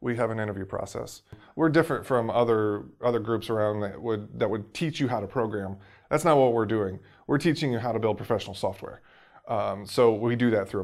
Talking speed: 220 wpm